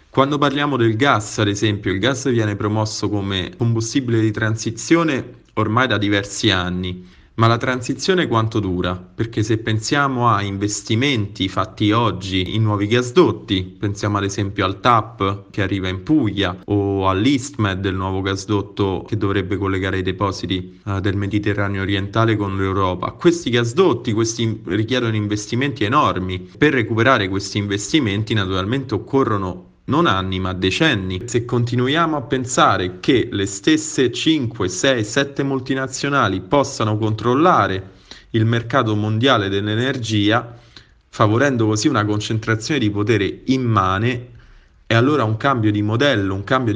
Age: 30-49